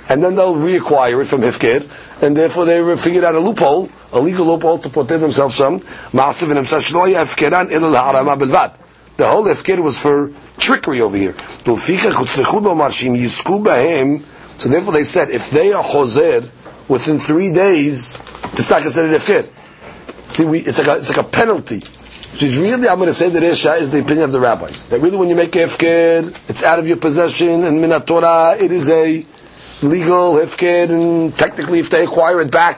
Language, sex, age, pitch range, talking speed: English, male, 40-59, 150-180 Hz, 160 wpm